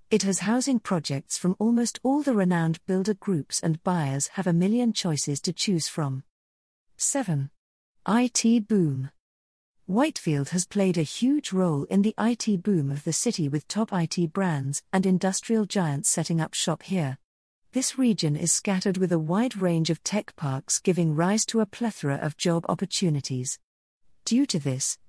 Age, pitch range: 40-59, 160-210 Hz